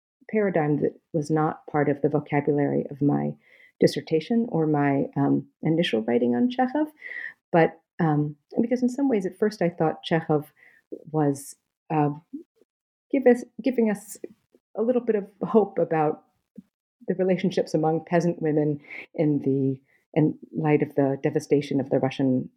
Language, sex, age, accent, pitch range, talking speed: English, female, 40-59, American, 140-190 Hz, 150 wpm